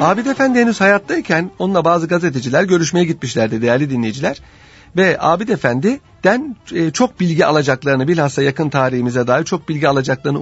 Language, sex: Turkish, male